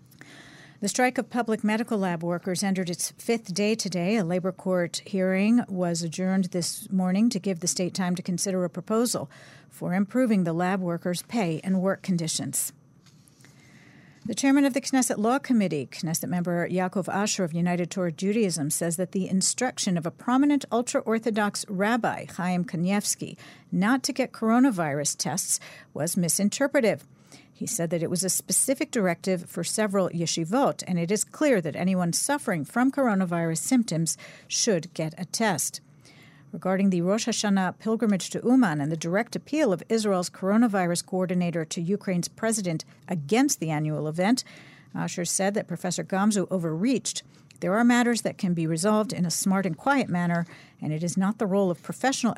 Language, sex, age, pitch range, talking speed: English, female, 50-69, 165-215 Hz, 165 wpm